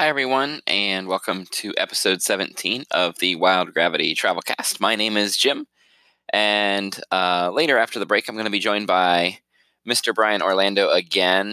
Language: English